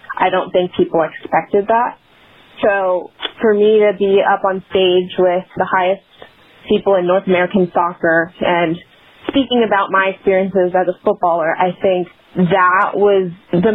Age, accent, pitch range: 20-39, American, 170-200 Hz